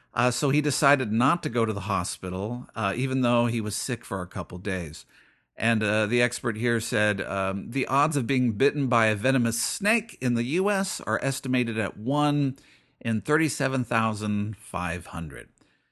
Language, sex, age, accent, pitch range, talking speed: English, male, 50-69, American, 110-150 Hz, 170 wpm